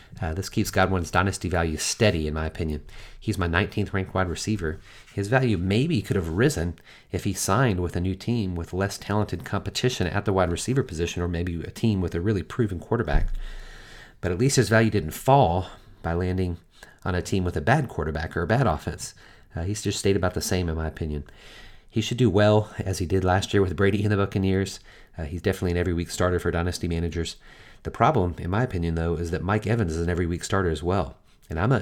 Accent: American